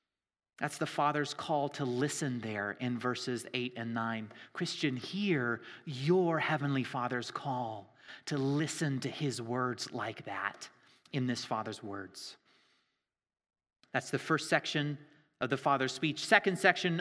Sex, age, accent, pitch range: male, 30-49, American, 130-175 Hz